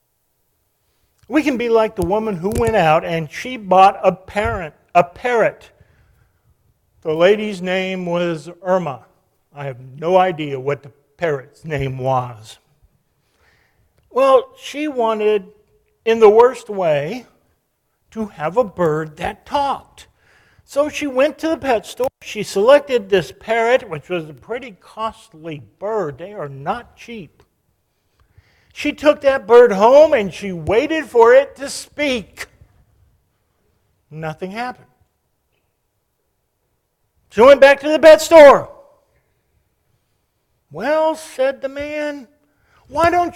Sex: male